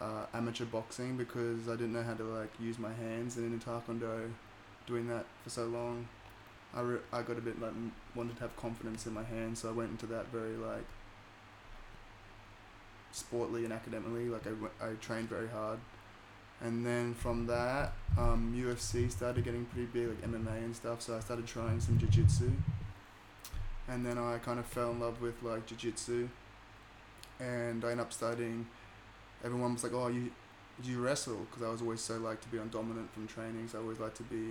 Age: 10-29